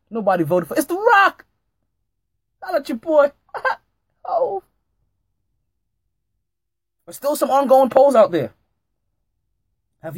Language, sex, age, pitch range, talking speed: English, male, 20-39, 110-180 Hz, 125 wpm